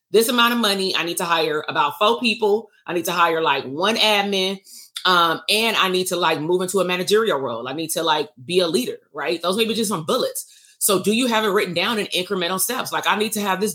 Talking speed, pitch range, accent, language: 255 wpm, 180-230 Hz, American, English